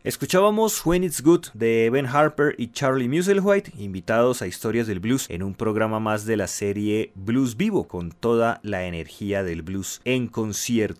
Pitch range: 100-135 Hz